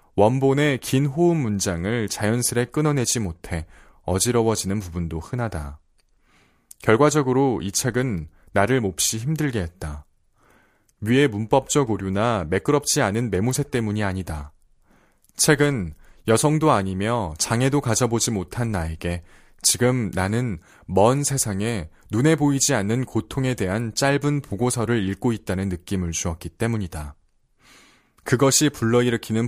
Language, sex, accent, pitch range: Korean, male, native, 95-125 Hz